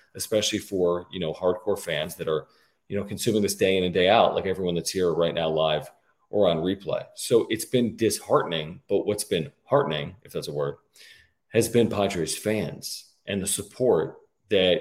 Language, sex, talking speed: English, male, 190 wpm